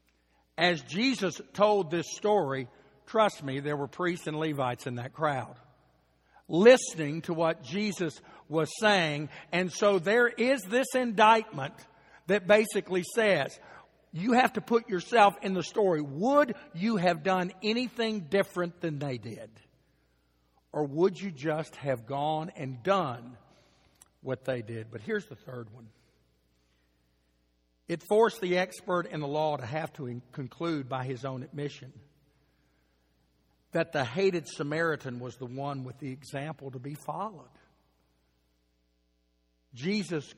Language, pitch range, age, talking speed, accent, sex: English, 110-180 Hz, 60-79, 135 wpm, American, male